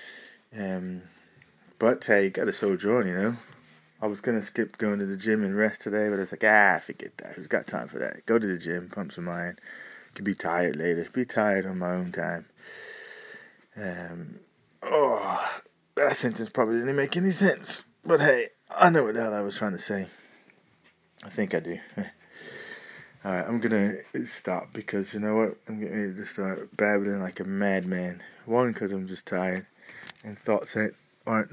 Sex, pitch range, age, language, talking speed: male, 95-115 Hz, 20-39, English, 185 wpm